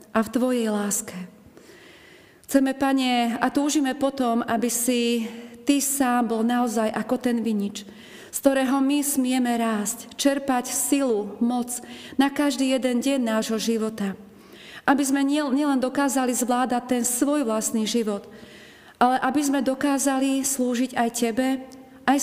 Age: 40-59